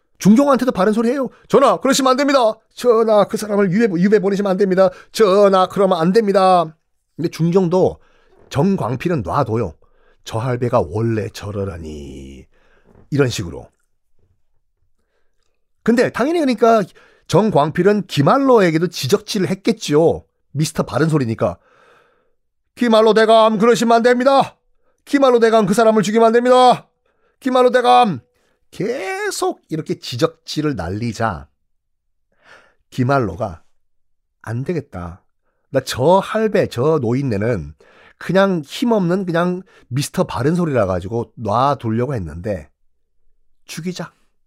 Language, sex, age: Korean, male, 40-59